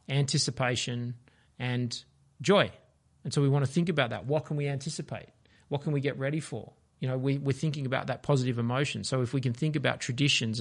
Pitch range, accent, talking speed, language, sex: 125-145 Hz, Australian, 205 wpm, English, male